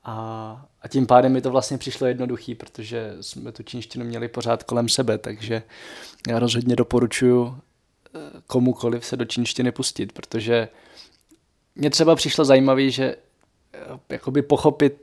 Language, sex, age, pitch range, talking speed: Czech, male, 20-39, 115-135 Hz, 130 wpm